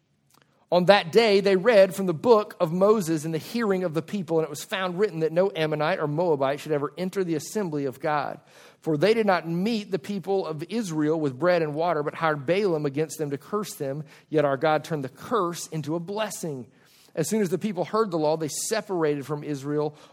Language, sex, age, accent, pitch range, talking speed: English, male, 40-59, American, 150-195 Hz, 225 wpm